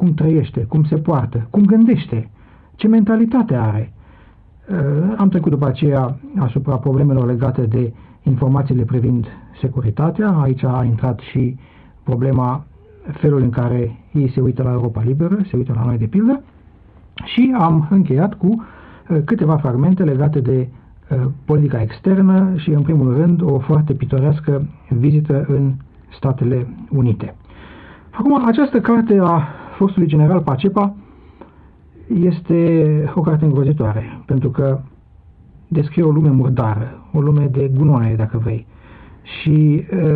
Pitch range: 120-155 Hz